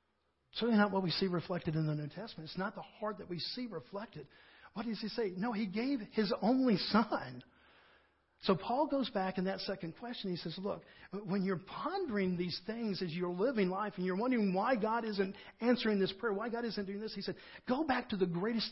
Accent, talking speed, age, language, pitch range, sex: American, 225 wpm, 50-69, English, 165-205 Hz, male